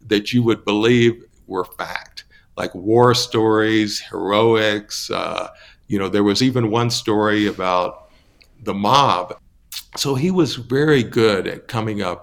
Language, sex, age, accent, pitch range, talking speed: English, male, 60-79, American, 95-120 Hz, 140 wpm